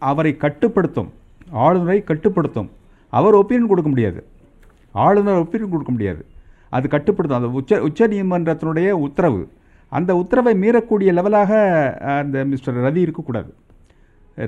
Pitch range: 140-210 Hz